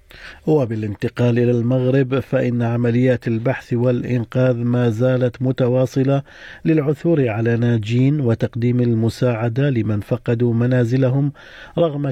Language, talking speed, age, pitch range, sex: Arabic, 95 wpm, 50-69, 115-130 Hz, male